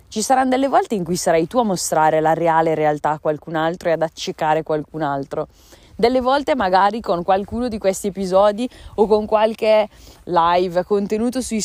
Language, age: Italian, 20-39